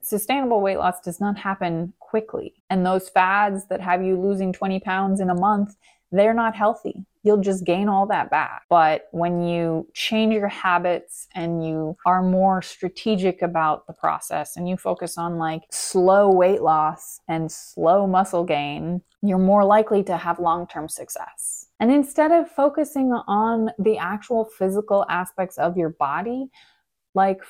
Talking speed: 160 wpm